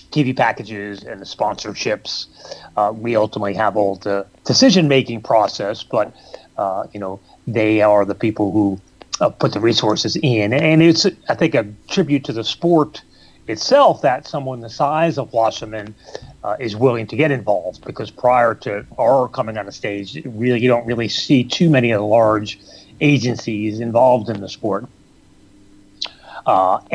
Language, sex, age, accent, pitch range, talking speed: English, male, 30-49, American, 110-135 Hz, 160 wpm